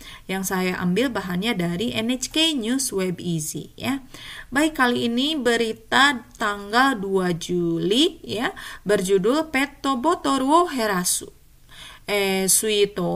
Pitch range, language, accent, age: 185-245 Hz, Japanese, Indonesian, 30-49